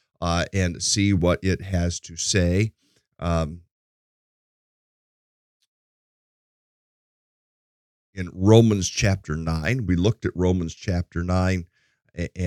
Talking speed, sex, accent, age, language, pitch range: 90 wpm, male, American, 50-69, English, 85-110 Hz